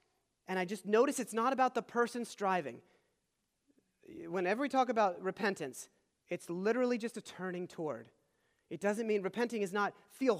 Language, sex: English, male